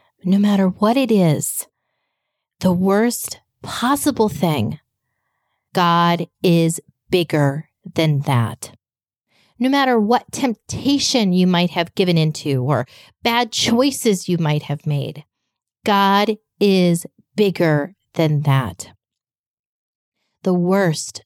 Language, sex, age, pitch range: English, female, 30-49, 155-225 Hz